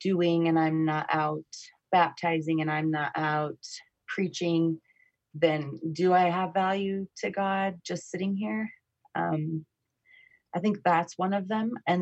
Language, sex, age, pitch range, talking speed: English, female, 30-49, 155-185 Hz, 145 wpm